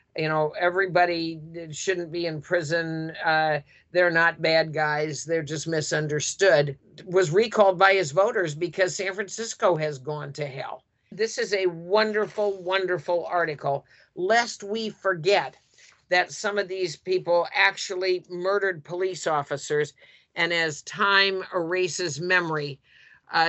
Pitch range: 155-185 Hz